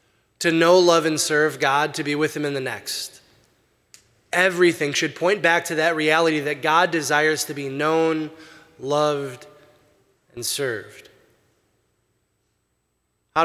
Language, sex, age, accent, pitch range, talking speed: English, male, 20-39, American, 140-175 Hz, 135 wpm